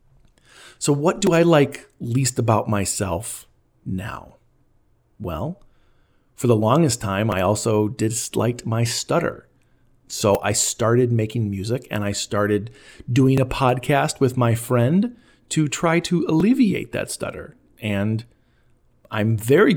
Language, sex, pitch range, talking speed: English, male, 110-145 Hz, 130 wpm